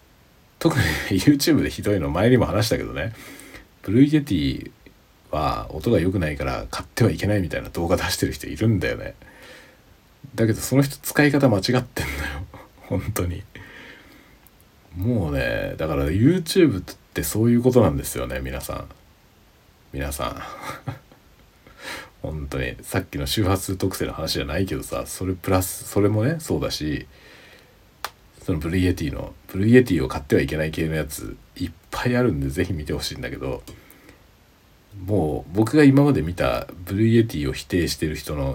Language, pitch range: Japanese, 80-115 Hz